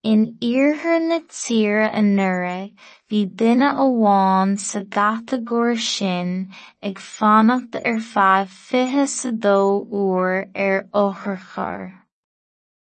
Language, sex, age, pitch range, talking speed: English, female, 20-39, 195-230 Hz, 70 wpm